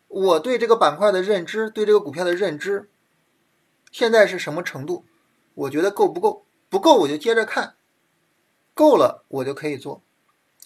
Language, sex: Chinese, male